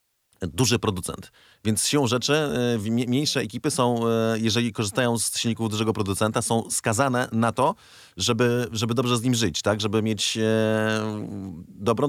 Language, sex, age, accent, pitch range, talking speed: Polish, male, 30-49, native, 95-120 Hz, 145 wpm